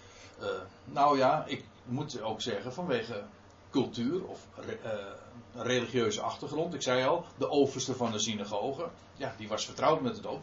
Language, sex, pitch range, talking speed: Dutch, male, 100-140 Hz, 165 wpm